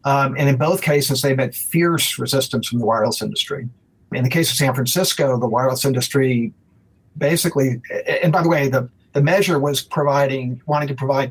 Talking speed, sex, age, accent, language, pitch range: 185 wpm, male, 50-69, American, English, 125-145 Hz